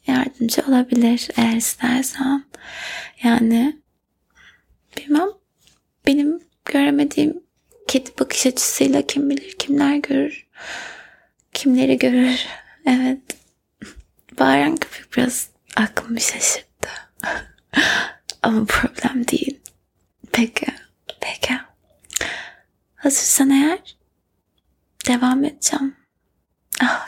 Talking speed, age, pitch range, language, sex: 75 wpm, 20-39, 255-305 Hz, Turkish, female